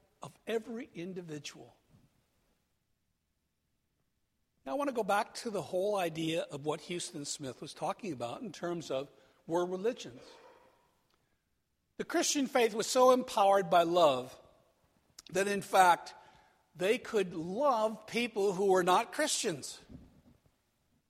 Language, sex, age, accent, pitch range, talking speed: English, male, 60-79, American, 165-235 Hz, 125 wpm